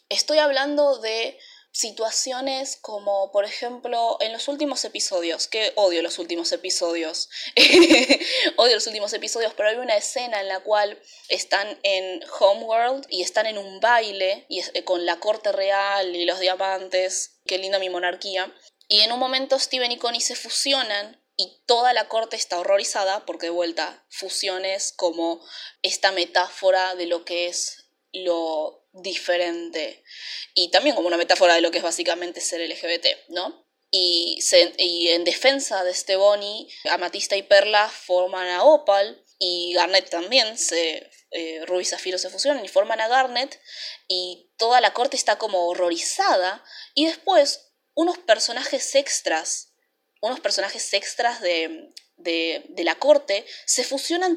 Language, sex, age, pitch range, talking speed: Spanish, female, 20-39, 180-265 Hz, 150 wpm